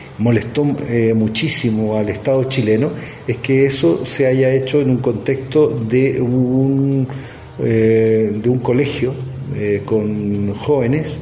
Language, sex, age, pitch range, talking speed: Spanish, male, 40-59, 105-130 Hz, 130 wpm